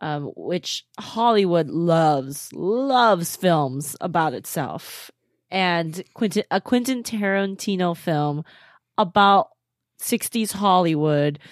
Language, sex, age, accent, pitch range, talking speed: English, female, 20-39, American, 155-205 Hz, 85 wpm